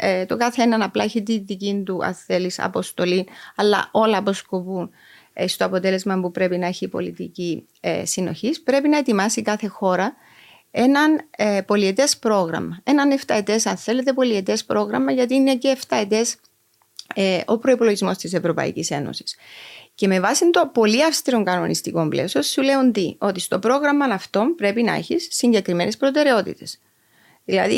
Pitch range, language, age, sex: 185-255 Hz, Greek, 30-49, female